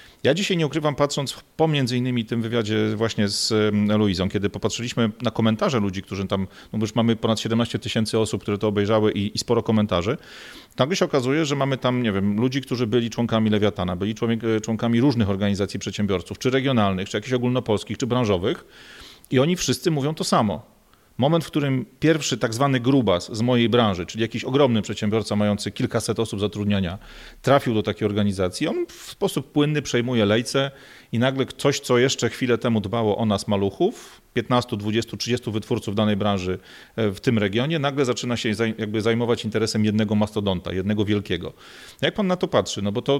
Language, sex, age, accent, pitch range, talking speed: Polish, male, 40-59, native, 105-130 Hz, 185 wpm